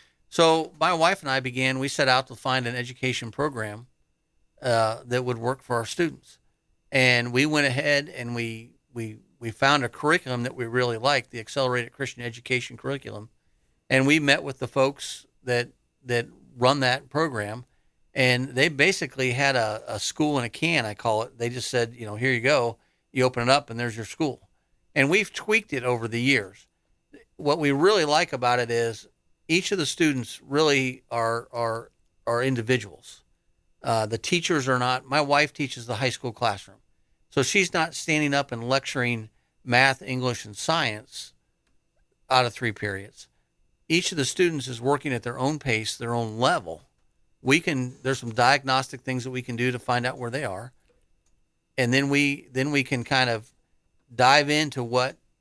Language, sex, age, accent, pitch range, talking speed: English, male, 50-69, American, 115-140 Hz, 185 wpm